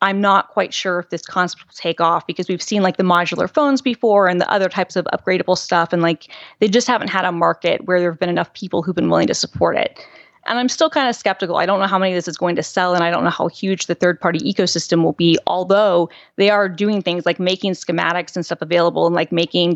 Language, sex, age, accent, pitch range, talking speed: English, female, 20-39, American, 170-195 Hz, 265 wpm